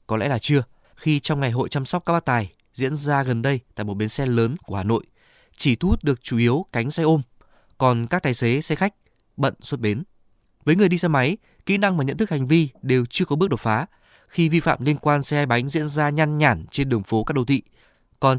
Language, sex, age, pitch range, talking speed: Vietnamese, male, 20-39, 120-160 Hz, 260 wpm